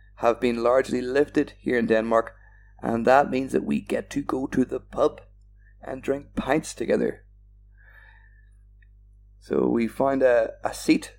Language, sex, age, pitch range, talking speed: English, male, 30-49, 100-130 Hz, 150 wpm